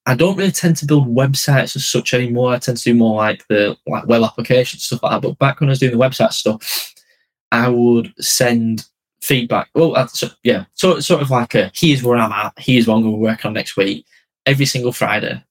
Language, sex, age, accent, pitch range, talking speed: English, male, 10-29, British, 115-135 Hz, 230 wpm